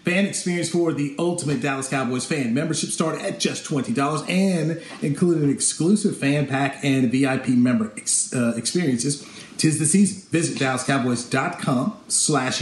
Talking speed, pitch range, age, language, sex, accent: 145 wpm, 135-185 Hz, 40-59, English, male, American